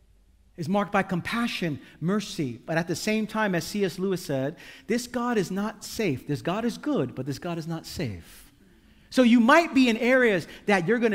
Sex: male